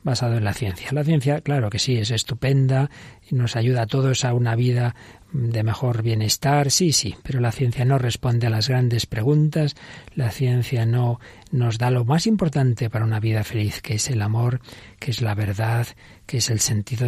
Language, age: Spanish, 40-59